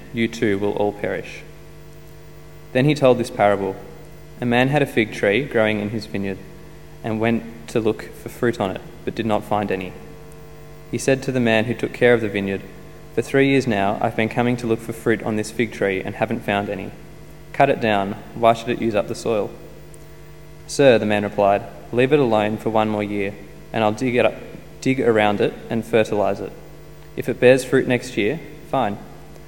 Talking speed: 205 wpm